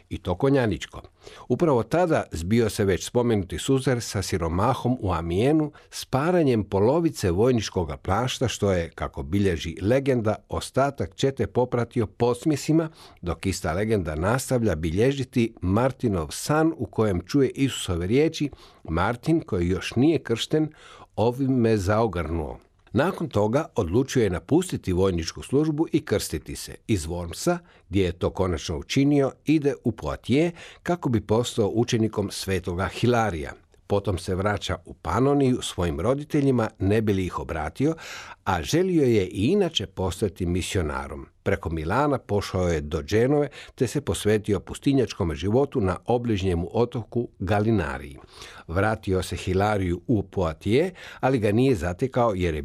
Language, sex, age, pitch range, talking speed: Croatian, male, 50-69, 95-130 Hz, 135 wpm